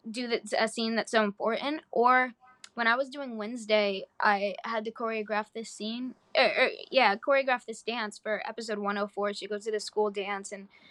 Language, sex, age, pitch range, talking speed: English, female, 10-29, 200-230 Hz, 185 wpm